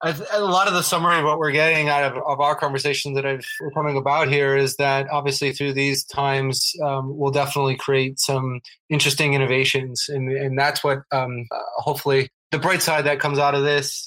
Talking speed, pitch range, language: 210 wpm, 135-150 Hz, English